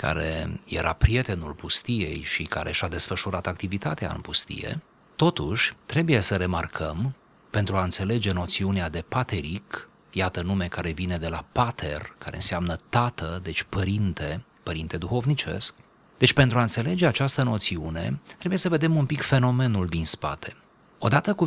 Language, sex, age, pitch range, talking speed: Romanian, male, 30-49, 90-130 Hz, 145 wpm